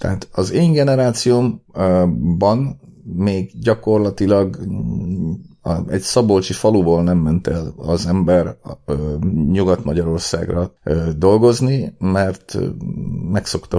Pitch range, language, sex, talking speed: 90-105 Hz, Hungarian, male, 80 wpm